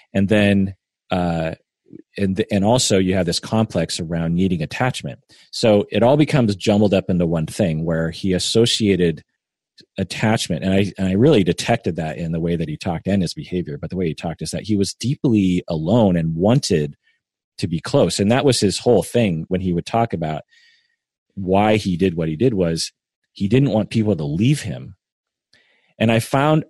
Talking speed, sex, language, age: 195 wpm, male, English, 30-49